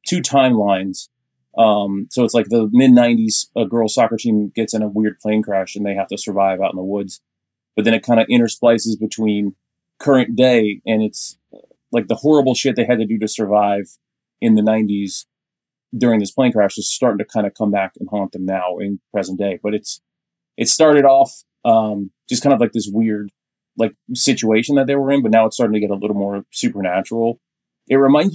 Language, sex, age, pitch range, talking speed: English, male, 30-49, 100-120 Hz, 210 wpm